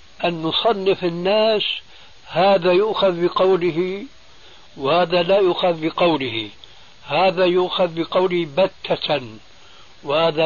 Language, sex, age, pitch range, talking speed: Arabic, male, 60-79, 140-180 Hz, 85 wpm